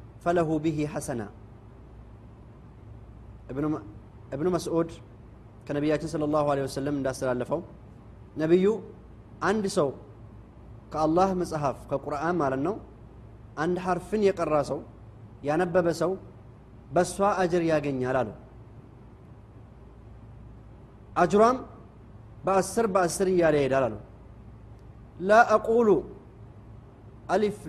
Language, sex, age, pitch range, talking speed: Amharic, male, 30-49, 115-190 Hz, 70 wpm